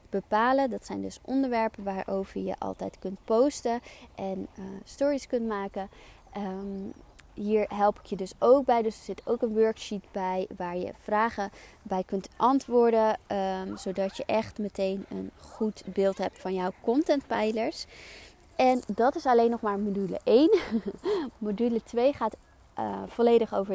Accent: Dutch